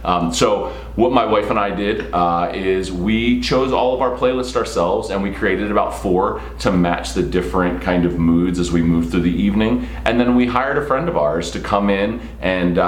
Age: 30-49